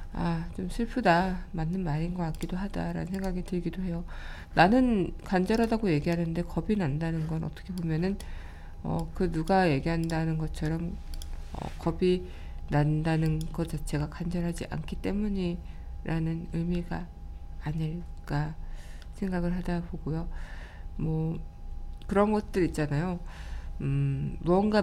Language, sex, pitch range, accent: Korean, female, 140-180 Hz, native